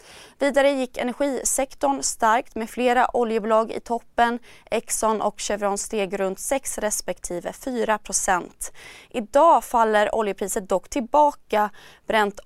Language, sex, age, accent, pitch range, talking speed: Swedish, female, 20-39, native, 200-255 Hz, 110 wpm